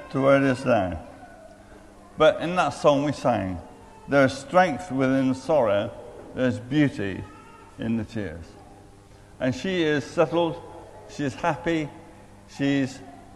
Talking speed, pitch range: 130 wpm, 100-145 Hz